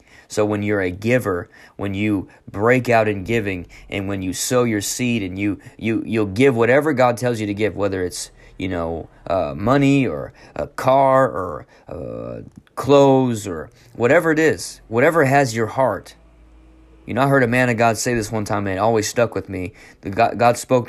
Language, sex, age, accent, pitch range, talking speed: English, male, 20-39, American, 105-130 Hz, 200 wpm